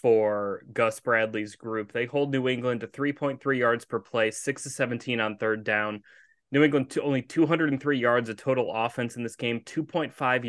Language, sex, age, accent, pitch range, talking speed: English, male, 20-39, American, 115-140 Hz, 185 wpm